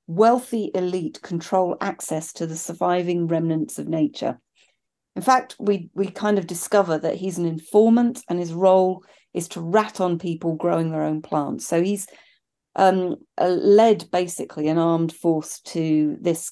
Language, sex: English, female